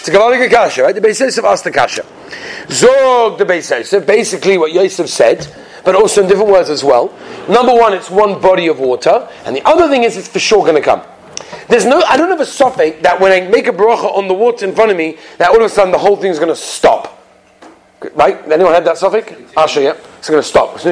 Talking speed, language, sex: 240 wpm, English, male